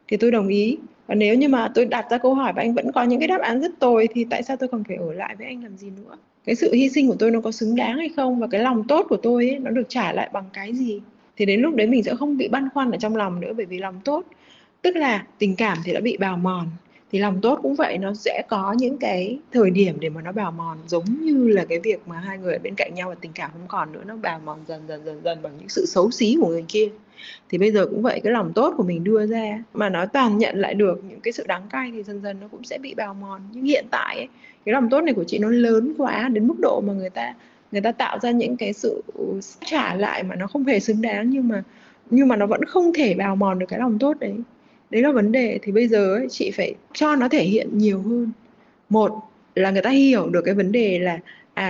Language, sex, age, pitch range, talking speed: Vietnamese, female, 20-39, 200-255 Hz, 285 wpm